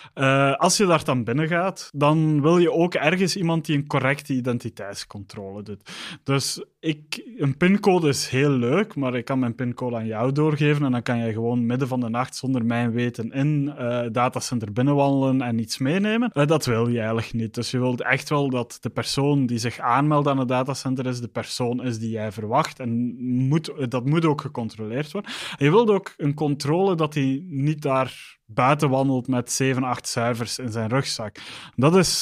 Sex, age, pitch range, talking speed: male, 20-39, 120-150 Hz, 200 wpm